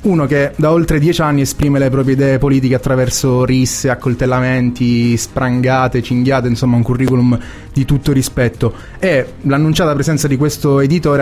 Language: Italian